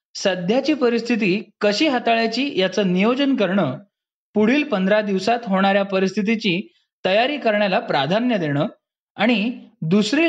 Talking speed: 105 wpm